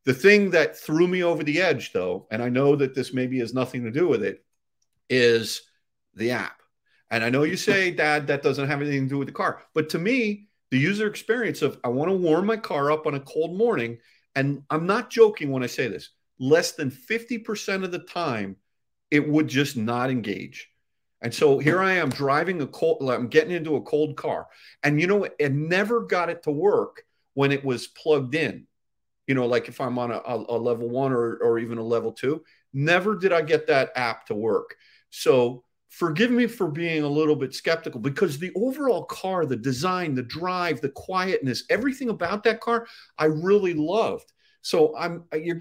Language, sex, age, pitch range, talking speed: English, male, 40-59, 135-200 Hz, 205 wpm